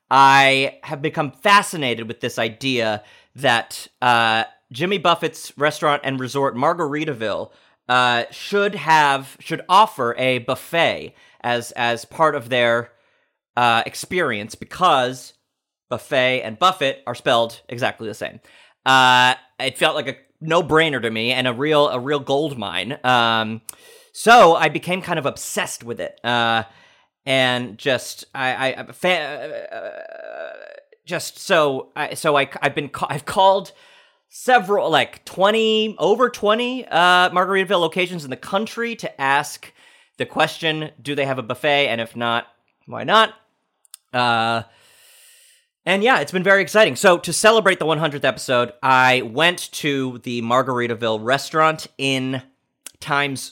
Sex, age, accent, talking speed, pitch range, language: male, 30-49, American, 140 wpm, 125-180 Hz, English